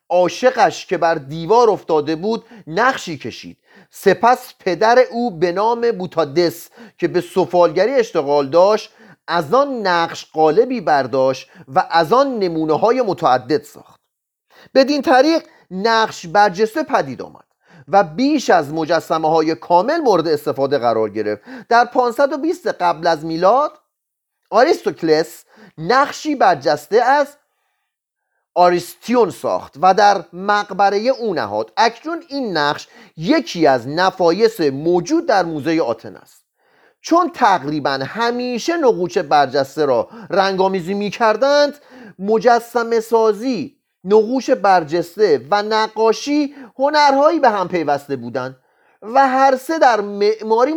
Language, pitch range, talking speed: Persian, 170-255 Hz, 115 wpm